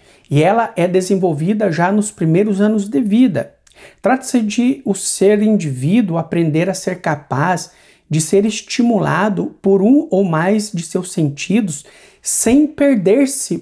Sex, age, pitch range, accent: male, 50-69, 175-225 Hz, Brazilian